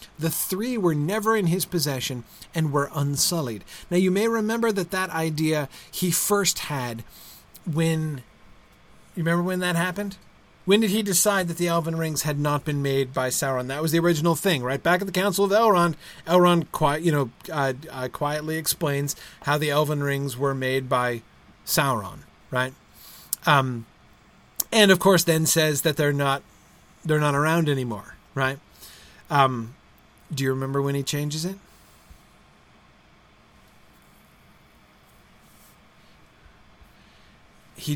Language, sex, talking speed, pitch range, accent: English, male, 145 wpm, 125-170 Hz, American